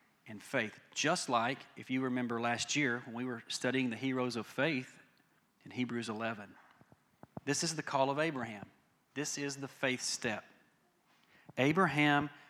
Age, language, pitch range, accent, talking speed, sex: 40-59, English, 125-145 Hz, American, 155 wpm, male